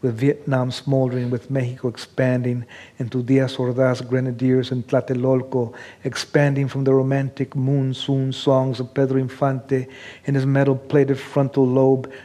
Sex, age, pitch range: male, 50-69, 125-140 Hz